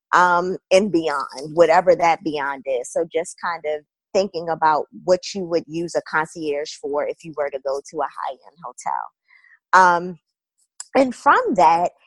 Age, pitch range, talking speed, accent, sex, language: 20-39, 165-215 Hz, 165 wpm, American, female, English